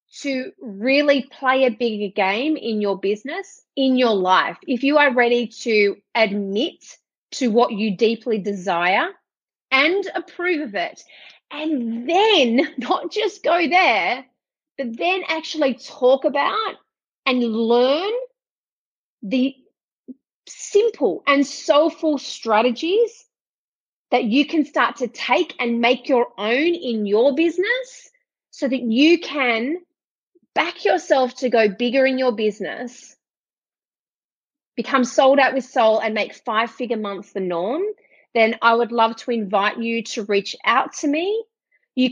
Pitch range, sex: 225-305 Hz, female